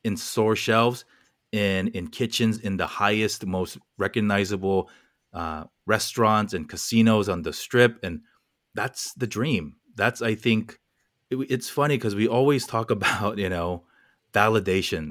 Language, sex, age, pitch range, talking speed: English, male, 30-49, 95-115 Hz, 145 wpm